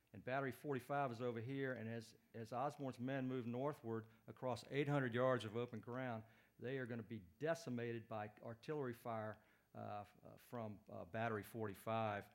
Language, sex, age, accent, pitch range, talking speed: English, male, 50-69, American, 105-130 Hz, 165 wpm